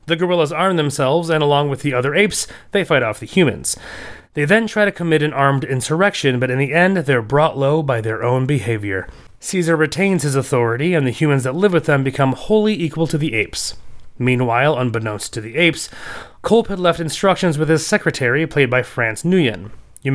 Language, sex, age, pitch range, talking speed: English, male, 30-49, 125-170 Hz, 205 wpm